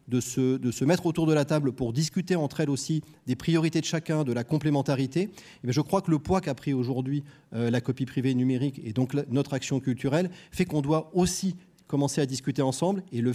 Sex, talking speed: male, 240 wpm